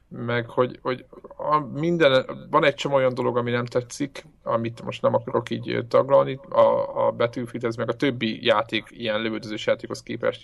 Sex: male